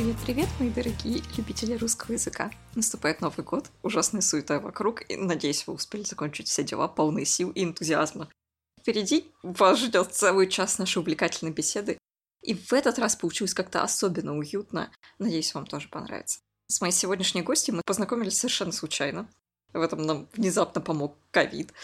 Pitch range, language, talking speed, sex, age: 165-225 Hz, Russian, 155 wpm, female, 20-39